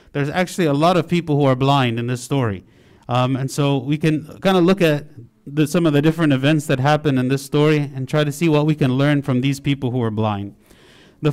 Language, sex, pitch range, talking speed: English, male, 135-155 Hz, 245 wpm